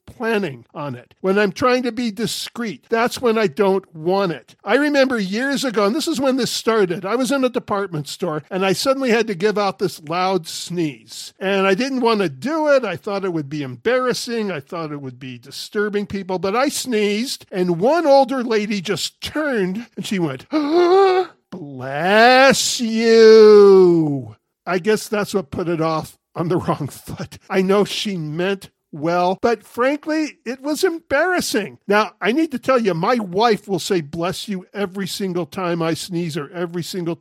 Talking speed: 185 wpm